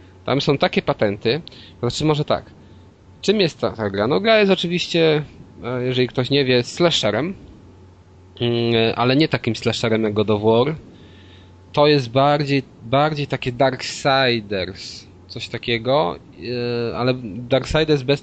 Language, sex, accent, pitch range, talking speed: Polish, male, native, 110-140 Hz, 135 wpm